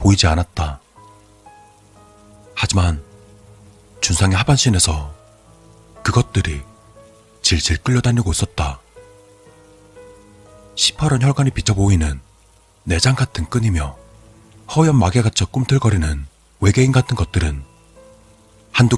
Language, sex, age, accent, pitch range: Korean, male, 40-59, native, 85-110 Hz